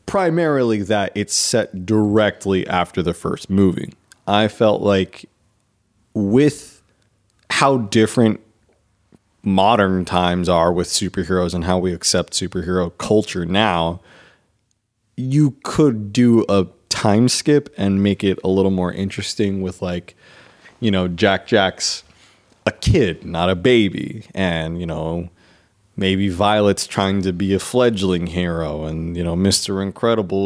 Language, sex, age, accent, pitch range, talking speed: English, male, 30-49, American, 95-115 Hz, 130 wpm